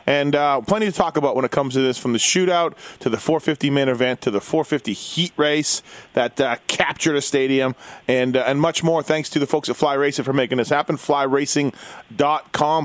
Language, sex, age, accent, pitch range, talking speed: English, male, 30-49, American, 130-160 Hz, 210 wpm